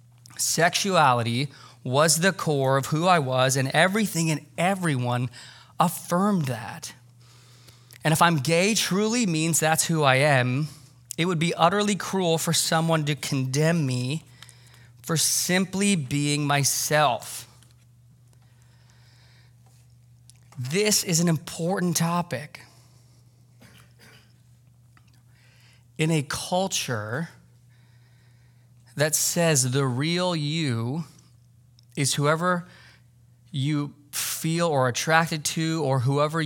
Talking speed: 100 wpm